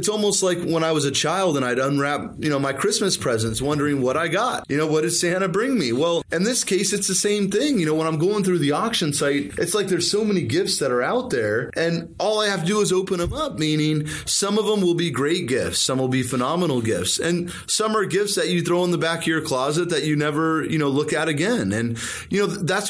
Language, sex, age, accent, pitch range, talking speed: English, male, 30-49, American, 135-185 Hz, 265 wpm